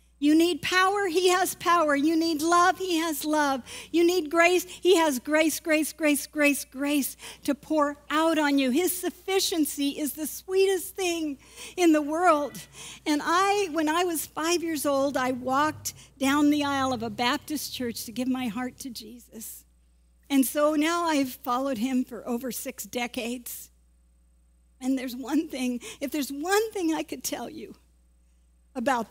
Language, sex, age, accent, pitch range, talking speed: English, female, 50-69, American, 250-340 Hz, 170 wpm